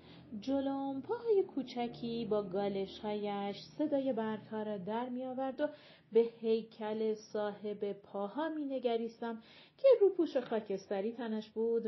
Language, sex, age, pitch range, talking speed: Persian, female, 40-59, 210-275 Hz, 110 wpm